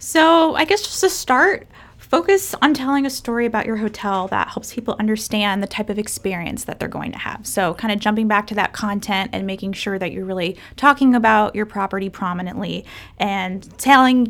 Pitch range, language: 195-250 Hz, English